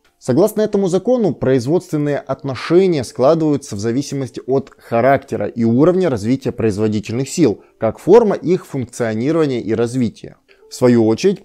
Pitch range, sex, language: 115-160 Hz, male, Russian